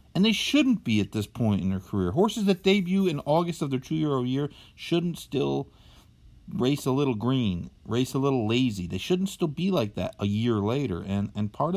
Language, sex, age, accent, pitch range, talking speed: English, male, 50-69, American, 100-145 Hz, 210 wpm